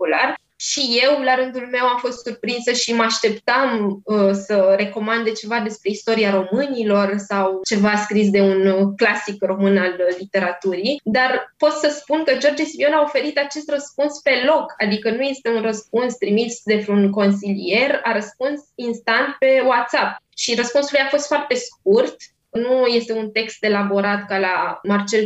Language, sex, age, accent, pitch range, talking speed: Romanian, female, 20-39, native, 205-275 Hz, 160 wpm